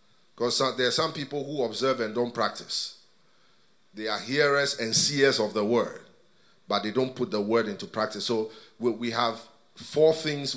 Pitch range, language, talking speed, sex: 125-155 Hz, English, 175 wpm, male